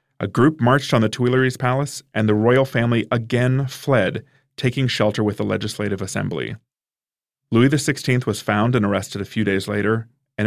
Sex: male